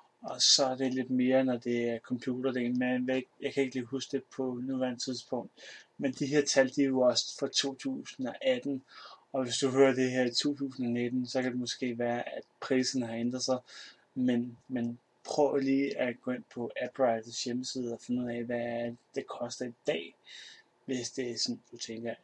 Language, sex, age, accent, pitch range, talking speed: Danish, male, 30-49, native, 125-150 Hz, 195 wpm